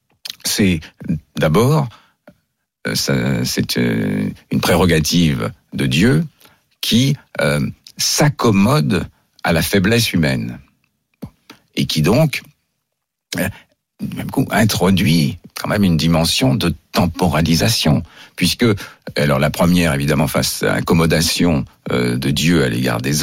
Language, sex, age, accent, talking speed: French, male, 60-79, French, 100 wpm